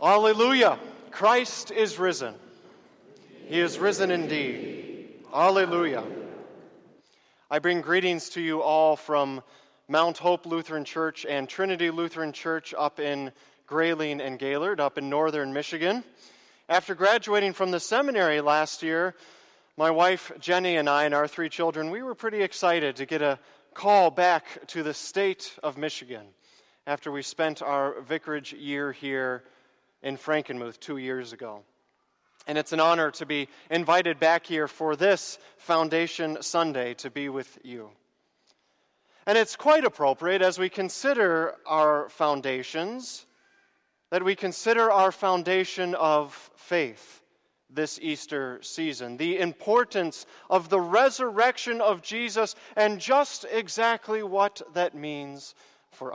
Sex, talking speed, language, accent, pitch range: male, 135 wpm, English, American, 145-195 Hz